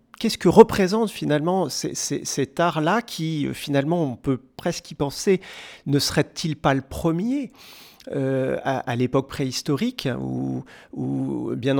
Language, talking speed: French, 140 wpm